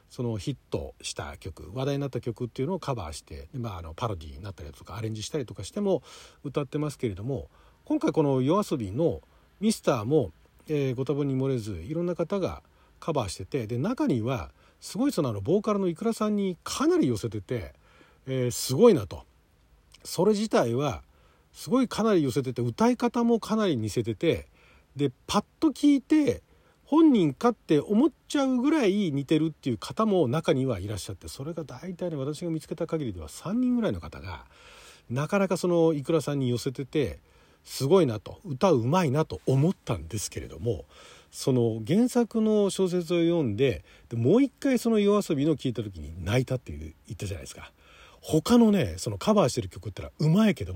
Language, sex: Japanese, male